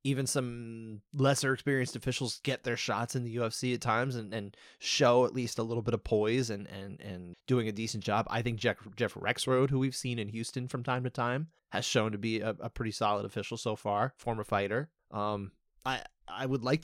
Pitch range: 110-135 Hz